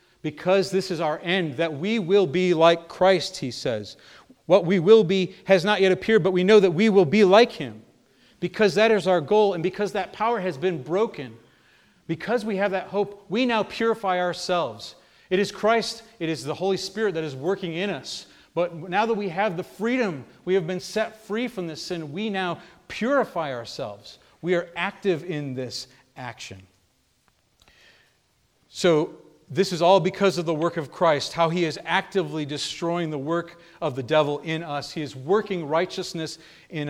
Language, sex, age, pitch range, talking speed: English, male, 40-59, 150-190 Hz, 190 wpm